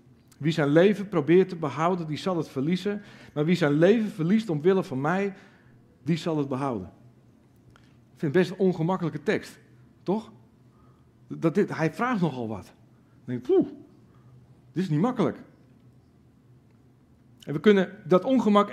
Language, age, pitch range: Dutch, 50-69, 125-200 Hz